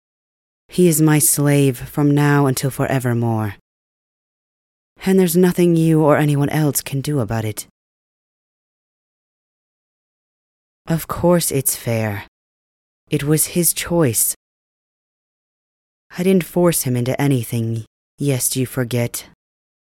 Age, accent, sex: 30-49, American, female